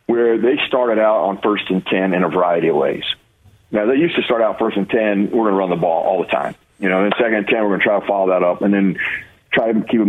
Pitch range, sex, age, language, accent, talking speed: 95-115 Hz, male, 40-59, English, American, 305 wpm